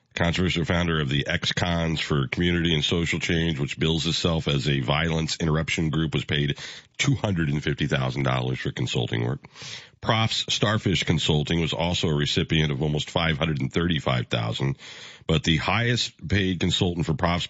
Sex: male